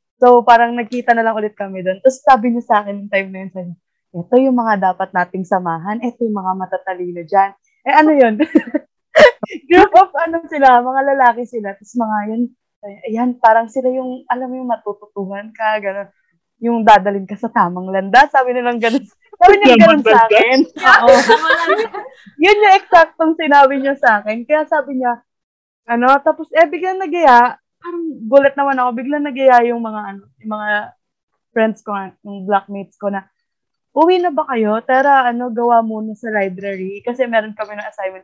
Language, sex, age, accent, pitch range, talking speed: English, female, 20-39, Filipino, 205-275 Hz, 180 wpm